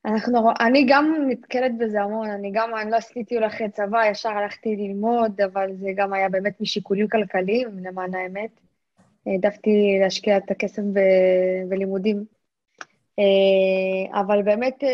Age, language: 20-39, Hebrew